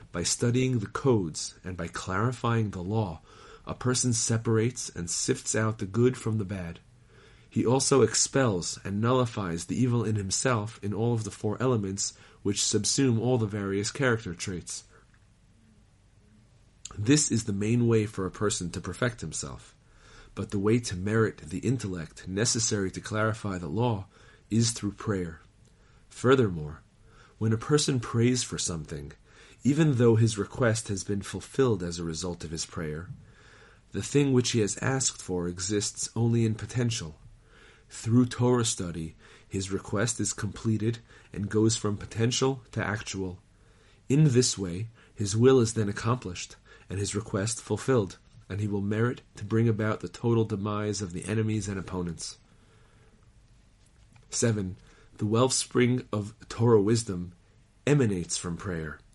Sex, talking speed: male, 150 wpm